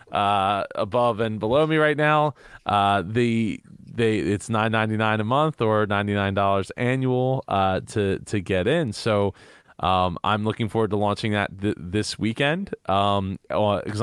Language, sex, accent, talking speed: English, male, American, 145 wpm